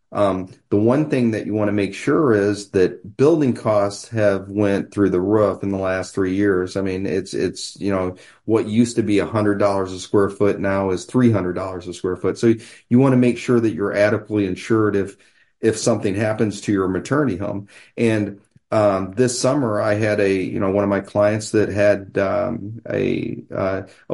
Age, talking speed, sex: 40-59, 210 wpm, male